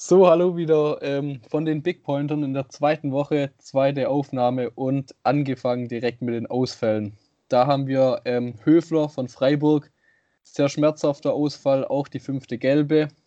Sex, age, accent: male, 20-39, German